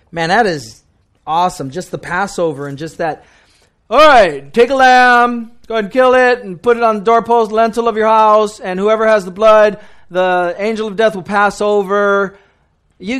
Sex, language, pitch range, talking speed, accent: male, English, 150-220 Hz, 195 wpm, American